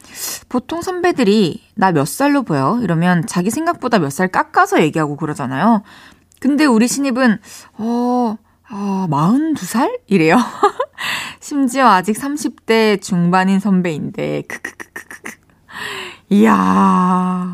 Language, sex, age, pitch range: Korean, female, 20-39, 180-265 Hz